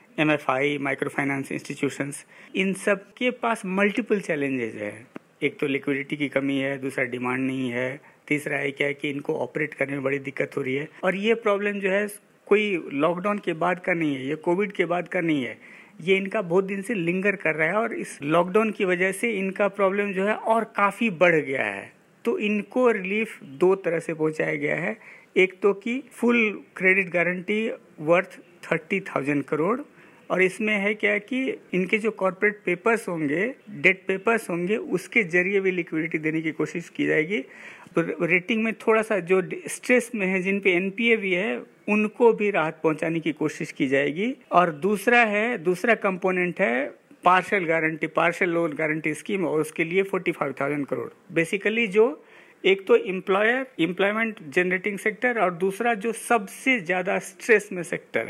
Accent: native